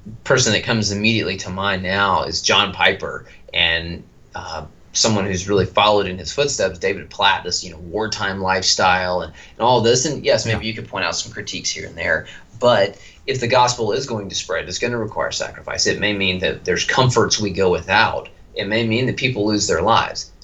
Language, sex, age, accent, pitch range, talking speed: English, male, 30-49, American, 95-115 Hz, 210 wpm